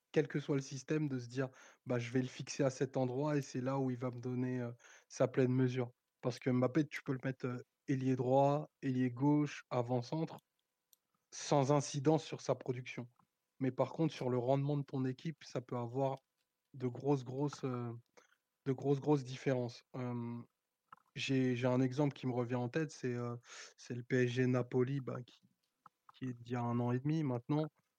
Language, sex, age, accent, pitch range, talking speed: French, male, 20-39, French, 125-140 Hz, 195 wpm